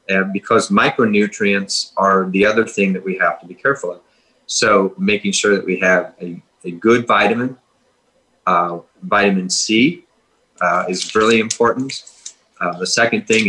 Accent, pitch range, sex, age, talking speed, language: American, 95-125 Hz, male, 30-49, 155 wpm, English